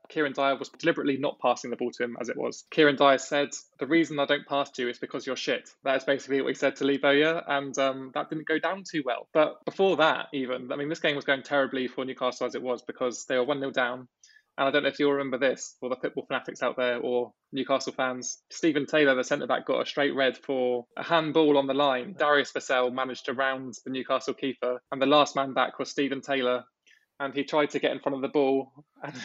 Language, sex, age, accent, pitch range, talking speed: English, male, 20-39, British, 130-150 Hz, 250 wpm